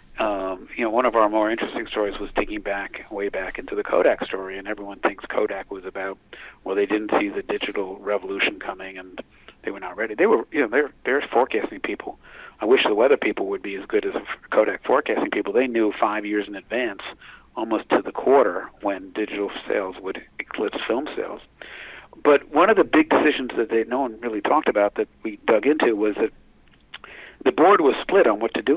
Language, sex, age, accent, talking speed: English, male, 50-69, American, 215 wpm